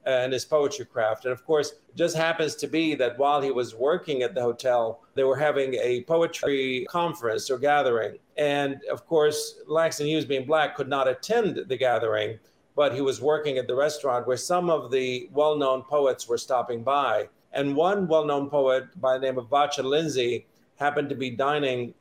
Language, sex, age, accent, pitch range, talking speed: English, male, 50-69, American, 130-155 Hz, 190 wpm